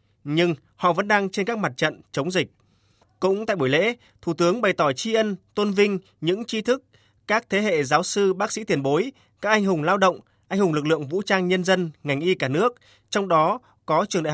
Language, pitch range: Vietnamese, 145-195 Hz